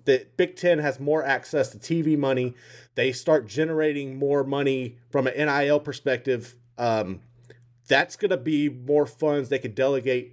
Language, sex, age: English, male, 30-49